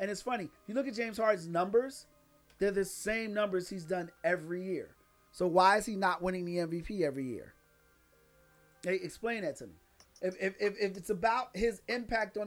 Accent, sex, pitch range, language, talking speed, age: American, male, 180-225 Hz, English, 190 wpm, 40-59